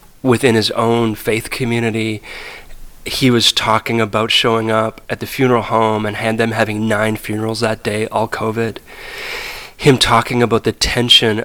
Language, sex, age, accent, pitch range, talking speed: English, male, 30-49, American, 110-125 Hz, 155 wpm